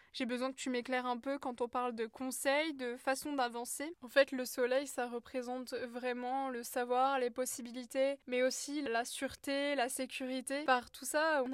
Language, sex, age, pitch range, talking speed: French, female, 20-39, 245-270 Hz, 185 wpm